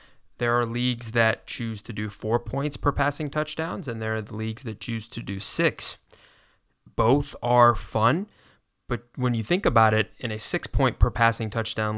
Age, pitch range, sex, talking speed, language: 20-39, 105-120 Hz, male, 175 wpm, English